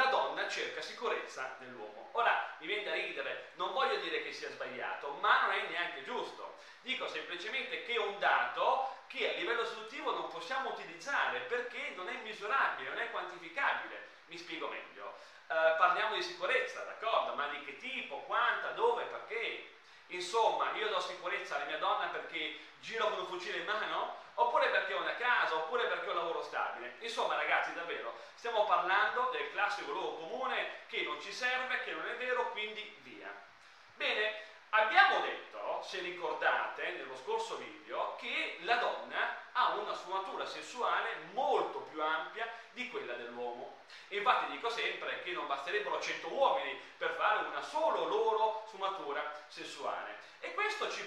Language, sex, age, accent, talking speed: Italian, male, 30-49, native, 160 wpm